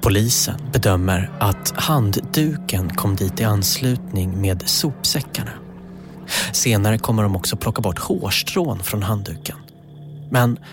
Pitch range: 100-145 Hz